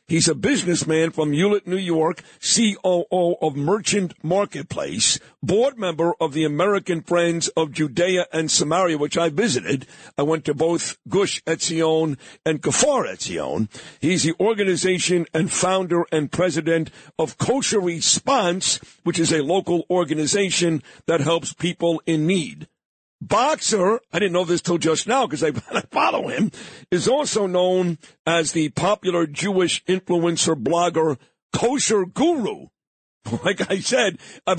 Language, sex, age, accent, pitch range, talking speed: English, male, 60-79, American, 160-190 Hz, 140 wpm